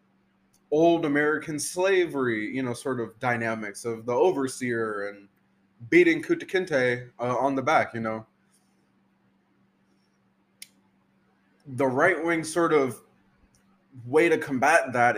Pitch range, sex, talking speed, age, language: 125-155 Hz, male, 120 wpm, 20-39, English